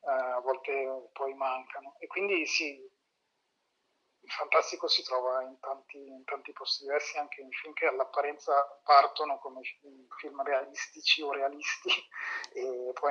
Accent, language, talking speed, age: native, Italian, 135 wpm, 30-49